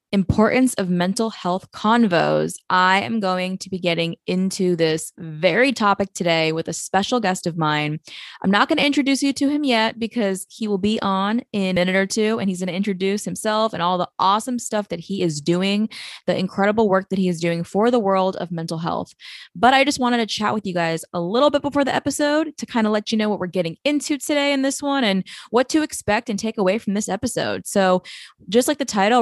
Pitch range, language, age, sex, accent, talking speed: 175-220 Hz, English, 20-39, female, American, 230 wpm